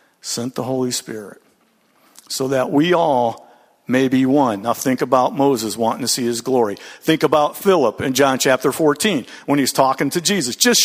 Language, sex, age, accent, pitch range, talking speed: English, male, 50-69, American, 150-200 Hz, 185 wpm